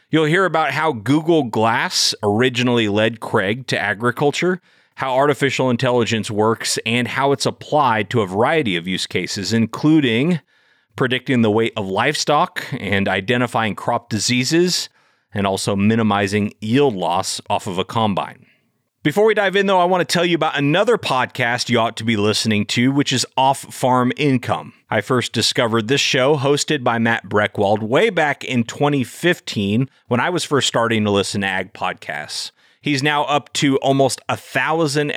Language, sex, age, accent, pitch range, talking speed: English, male, 30-49, American, 110-140 Hz, 165 wpm